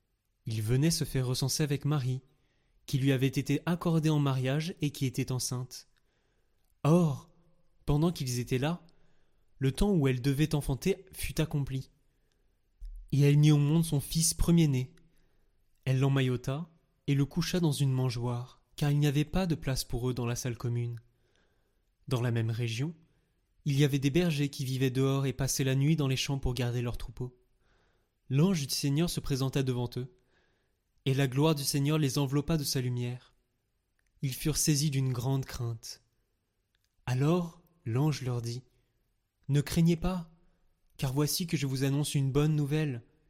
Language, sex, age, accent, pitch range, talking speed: French, male, 20-39, French, 125-155 Hz, 170 wpm